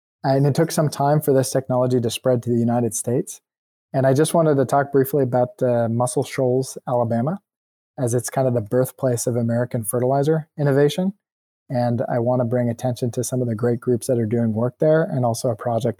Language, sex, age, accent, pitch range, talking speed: English, male, 20-39, American, 120-140 Hz, 215 wpm